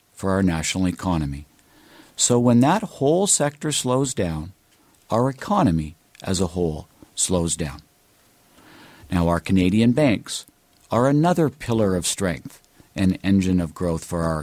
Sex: male